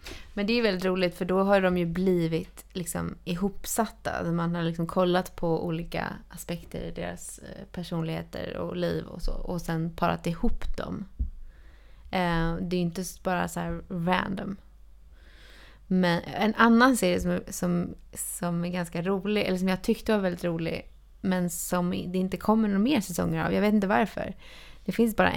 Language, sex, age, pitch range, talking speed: Swedish, female, 20-39, 170-200 Hz, 175 wpm